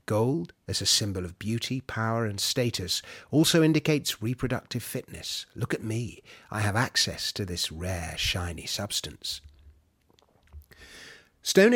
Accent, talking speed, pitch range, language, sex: British, 130 wpm, 95-130 Hz, English, male